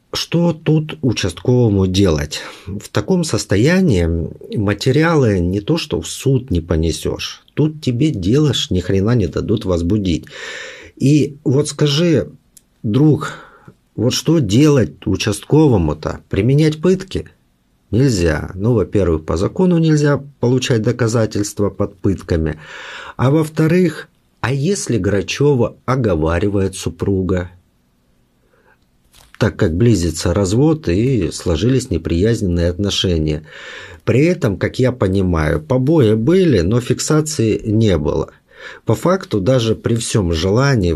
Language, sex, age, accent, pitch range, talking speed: Russian, male, 50-69, native, 90-135 Hz, 110 wpm